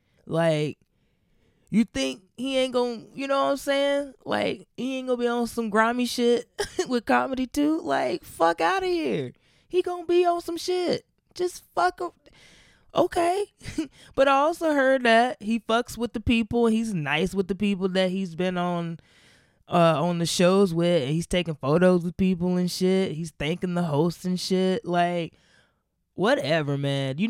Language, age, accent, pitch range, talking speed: English, 20-39, American, 160-250 Hz, 180 wpm